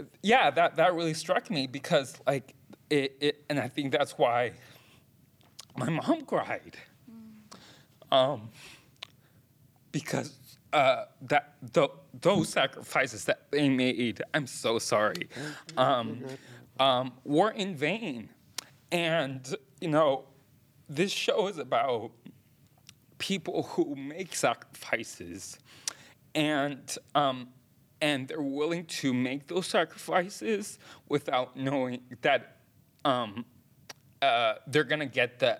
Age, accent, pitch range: 20-39, American, 130-165 Hz